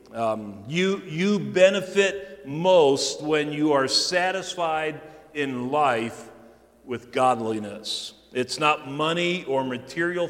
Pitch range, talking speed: 130-175 Hz, 105 wpm